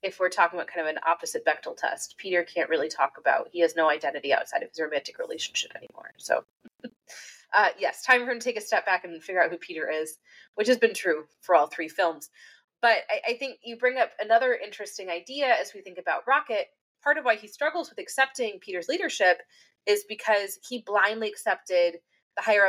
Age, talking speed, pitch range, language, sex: 30-49, 215 wpm, 190-280 Hz, English, female